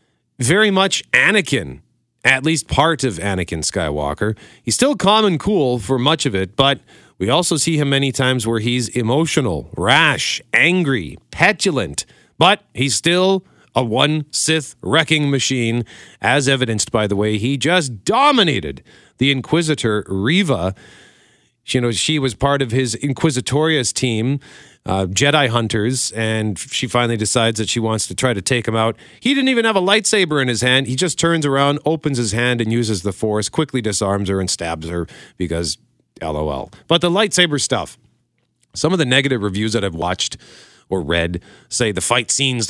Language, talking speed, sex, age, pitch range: English, 170 wpm, male, 40-59, 110-160 Hz